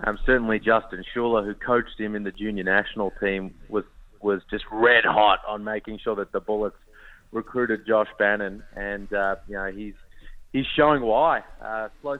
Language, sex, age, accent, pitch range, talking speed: English, male, 30-49, Australian, 105-135 Hz, 175 wpm